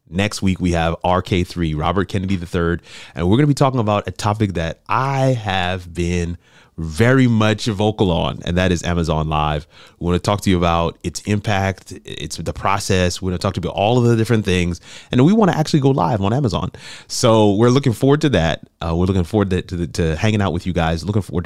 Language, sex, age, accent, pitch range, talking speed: English, male, 30-49, American, 85-115 Hz, 235 wpm